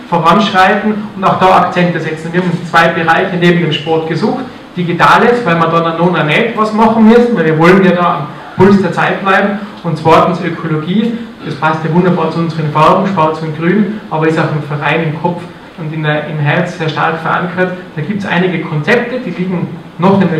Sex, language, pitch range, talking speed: male, German, 165-195 Hz, 210 wpm